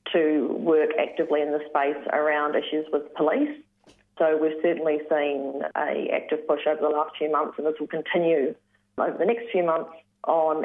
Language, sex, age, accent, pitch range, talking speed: English, female, 30-49, Australian, 150-170 Hz, 180 wpm